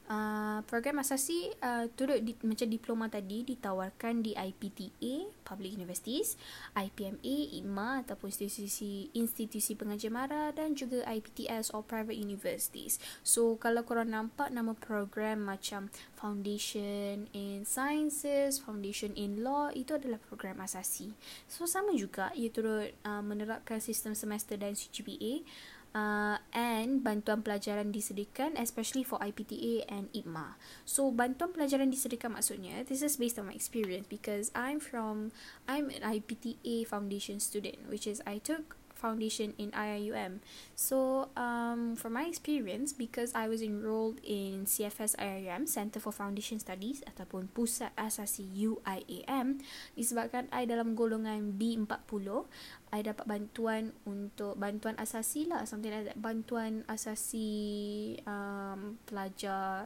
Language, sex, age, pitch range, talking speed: Malay, female, 10-29, 210-245 Hz, 130 wpm